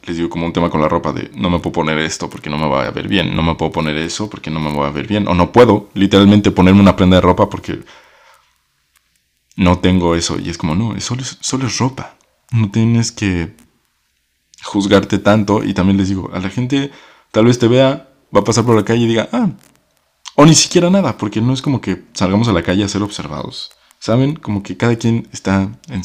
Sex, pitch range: male, 85-115 Hz